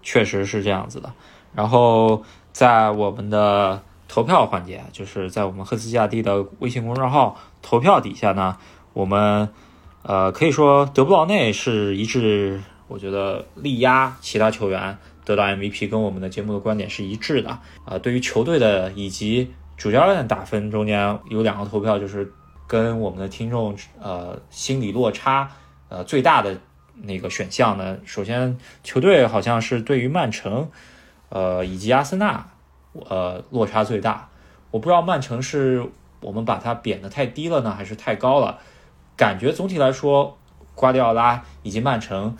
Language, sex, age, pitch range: Chinese, male, 20-39, 100-125 Hz